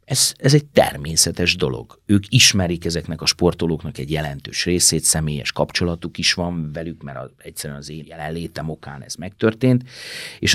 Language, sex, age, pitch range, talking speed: Hungarian, male, 30-49, 80-110 Hz, 160 wpm